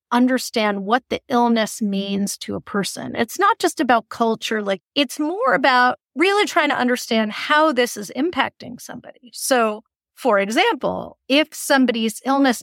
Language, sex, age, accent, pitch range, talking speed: English, female, 40-59, American, 215-280 Hz, 150 wpm